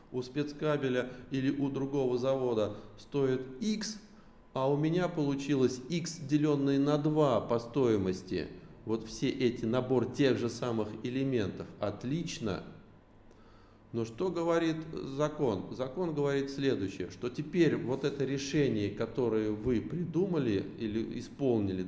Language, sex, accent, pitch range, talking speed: Russian, male, native, 110-150 Hz, 120 wpm